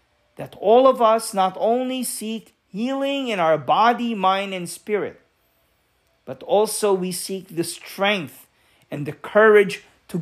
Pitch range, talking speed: 160-220 Hz, 140 wpm